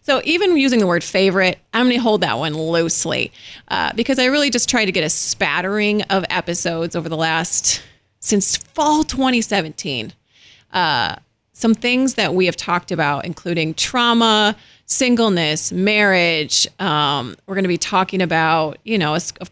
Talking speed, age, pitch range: 165 wpm, 30-49, 175-230 Hz